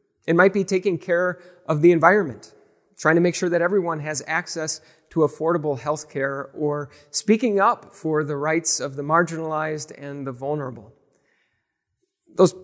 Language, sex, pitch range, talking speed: English, male, 145-185 Hz, 155 wpm